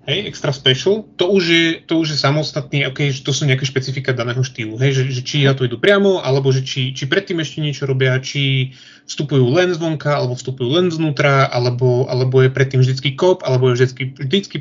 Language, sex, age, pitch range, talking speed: Slovak, male, 20-39, 130-150 Hz, 210 wpm